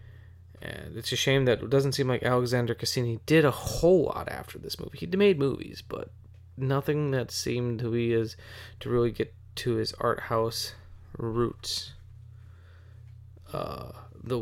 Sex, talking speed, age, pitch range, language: male, 160 wpm, 20-39, 110-120 Hz, English